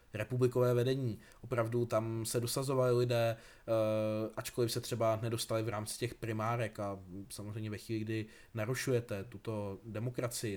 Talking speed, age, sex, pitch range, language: 130 wpm, 20-39, male, 110-130 Hz, Czech